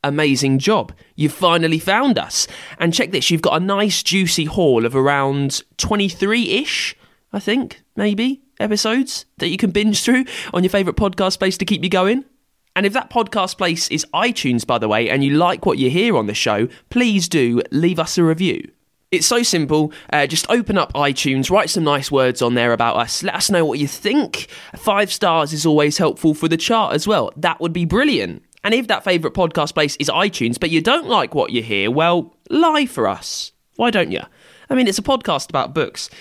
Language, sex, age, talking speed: English, male, 20-39, 210 wpm